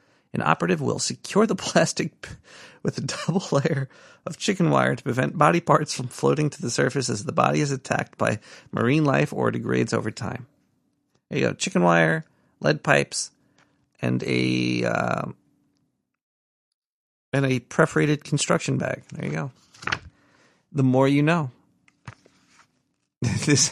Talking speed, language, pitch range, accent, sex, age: 145 wpm, English, 115-170 Hz, American, male, 40-59